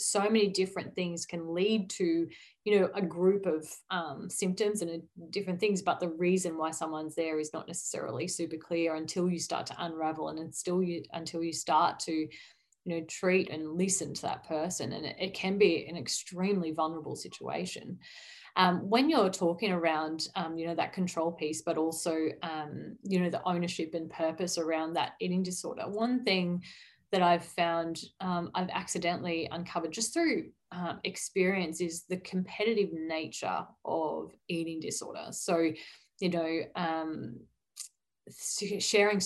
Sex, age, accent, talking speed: female, 30-49, Australian, 160 wpm